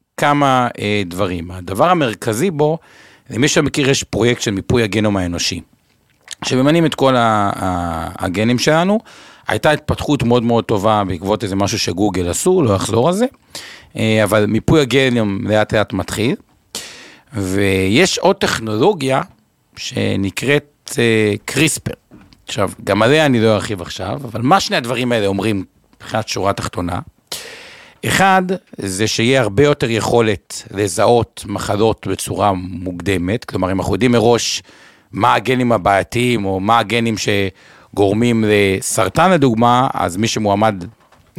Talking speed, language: 135 wpm, Hebrew